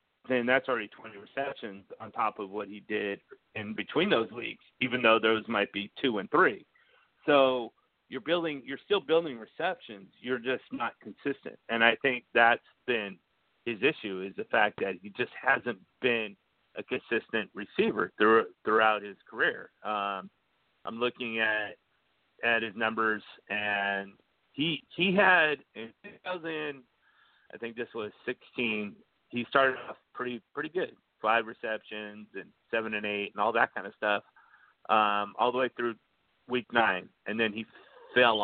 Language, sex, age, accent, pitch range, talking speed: English, male, 40-59, American, 105-135 Hz, 160 wpm